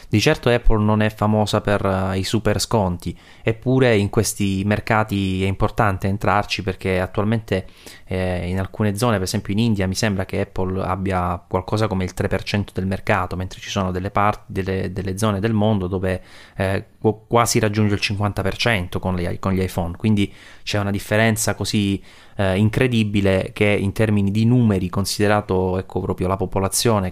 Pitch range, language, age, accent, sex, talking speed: 95-110 Hz, Italian, 20-39, native, male, 160 wpm